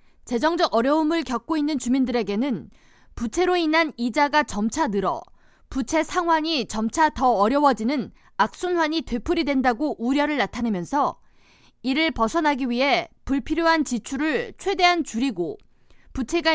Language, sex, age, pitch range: Korean, female, 20-39, 245-330 Hz